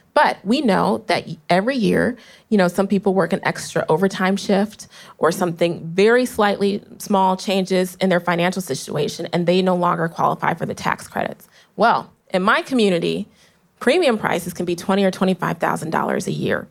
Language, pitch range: English, 180-225 Hz